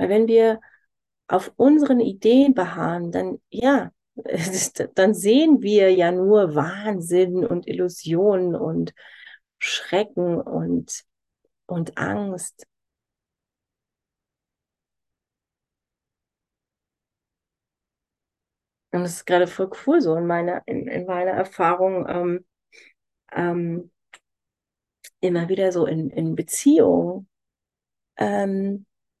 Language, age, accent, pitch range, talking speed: German, 30-49, German, 180-220 Hz, 85 wpm